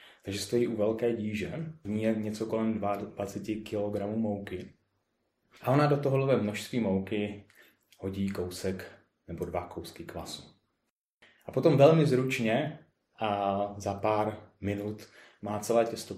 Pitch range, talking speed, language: 95-115 Hz, 135 wpm, Czech